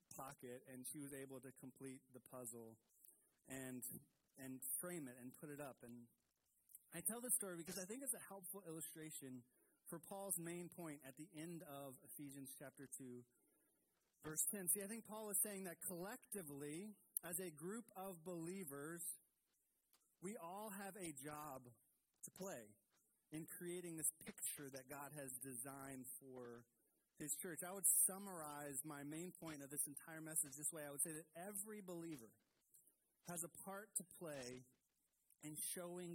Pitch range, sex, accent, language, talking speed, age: 135-180 Hz, male, American, English, 165 wpm, 30-49